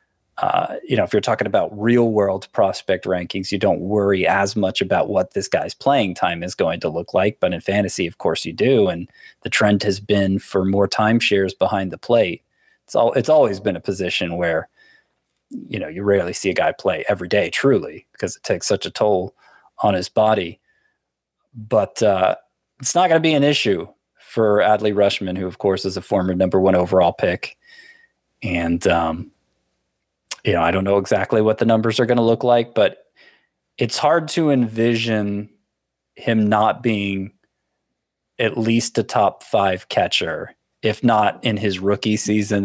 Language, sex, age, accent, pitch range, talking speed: English, male, 30-49, American, 95-120 Hz, 185 wpm